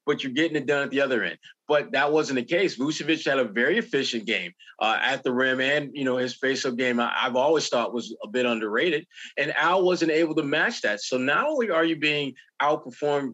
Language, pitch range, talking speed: English, 130-160 Hz, 235 wpm